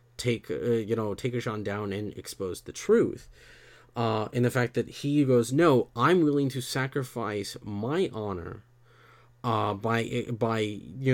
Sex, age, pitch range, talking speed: male, 30-49, 110-125 Hz, 155 wpm